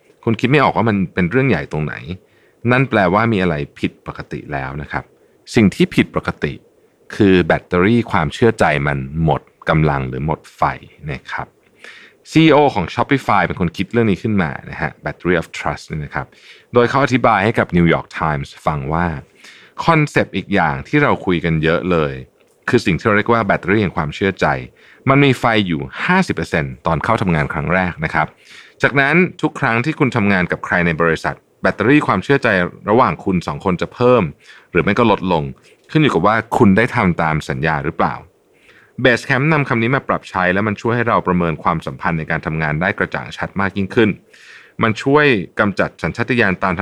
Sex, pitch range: male, 85-130 Hz